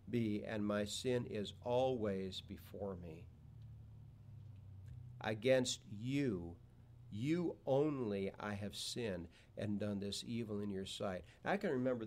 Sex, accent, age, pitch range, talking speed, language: male, American, 50-69, 105-125 Hz, 125 wpm, English